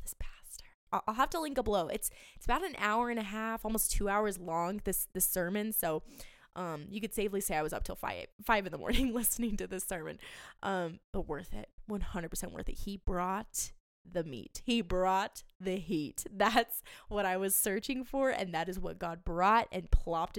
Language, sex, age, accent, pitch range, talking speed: English, female, 20-39, American, 180-215 Hz, 205 wpm